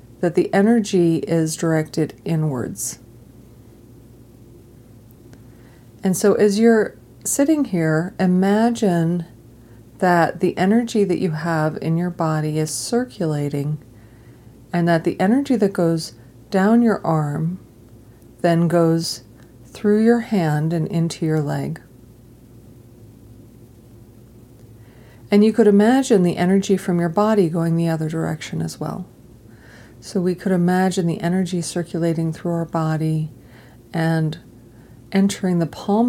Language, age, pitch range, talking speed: English, 40-59, 120-175 Hz, 120 wpm